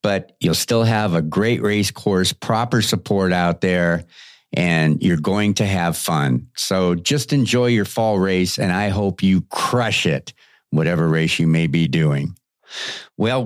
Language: English